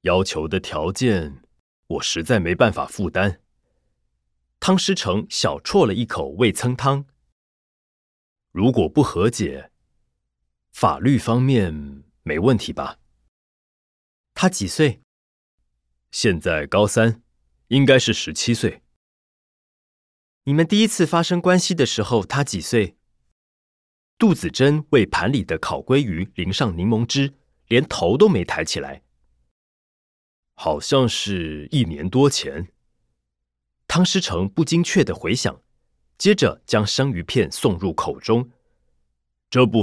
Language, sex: Chinese, male